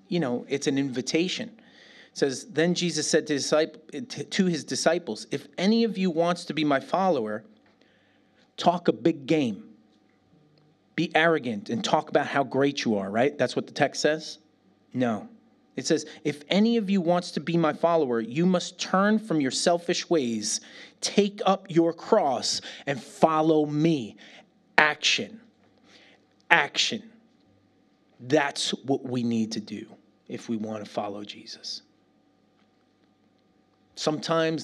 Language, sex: English, male